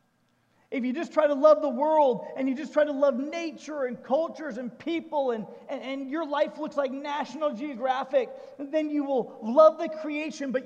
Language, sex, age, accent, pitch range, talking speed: English, male, 40-59, American, 205-270 Hz, 195 wpm